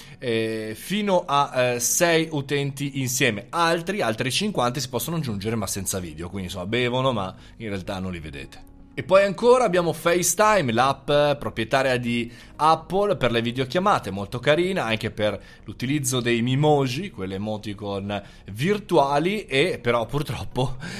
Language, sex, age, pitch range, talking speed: Italian, male, 30-49, 115-160 Hz, 135 wpm